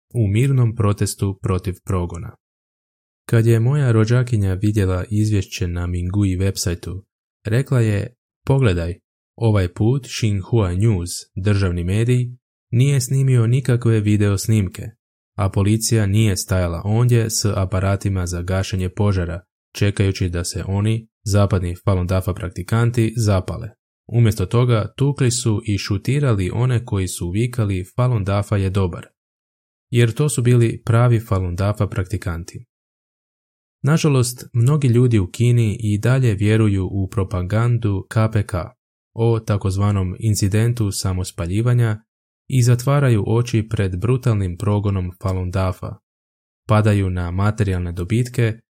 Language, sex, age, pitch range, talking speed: Croatian, male, 20-39, 95-115 Hz, 120 wpm